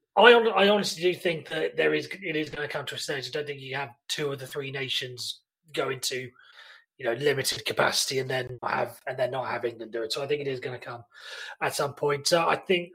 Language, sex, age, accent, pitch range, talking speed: English, male, 30-49, British, 140-180 Hz, 255 wpm